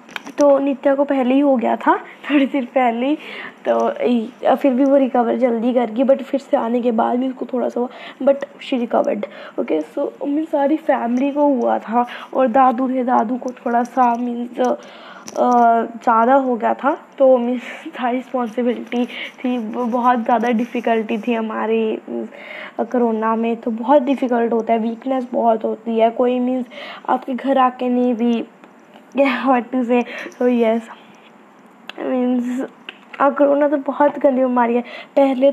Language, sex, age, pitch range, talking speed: Hindi, female, 20-39, 245-285 Hz, 155 wpm